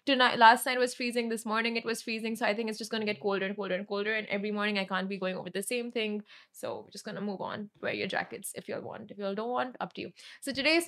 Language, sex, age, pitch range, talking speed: Arabic, female, 20-39, 210-260 Hz, 315 wpm